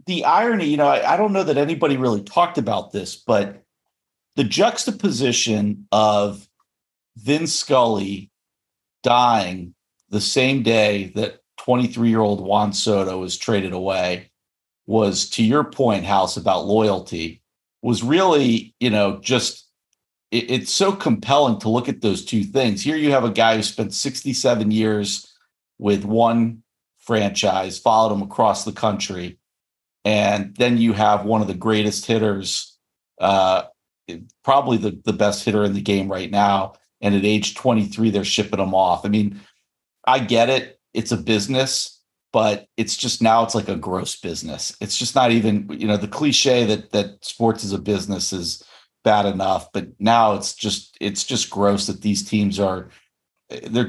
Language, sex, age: English, male, 50-69